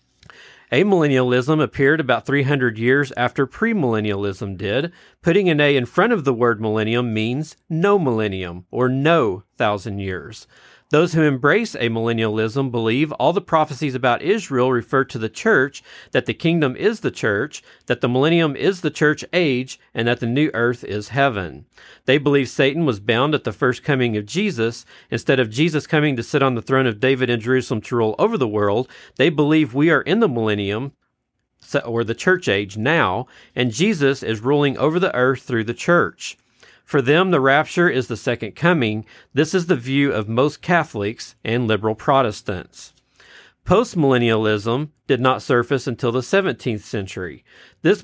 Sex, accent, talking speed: male, American, 170 wpm